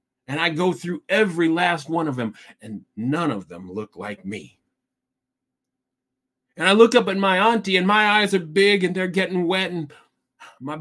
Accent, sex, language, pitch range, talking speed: American, male, English, 130-180 Hz, 190 wpm